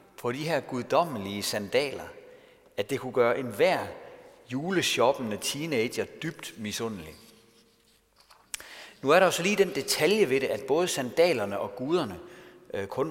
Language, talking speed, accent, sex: Danish, 135 wpm, native, male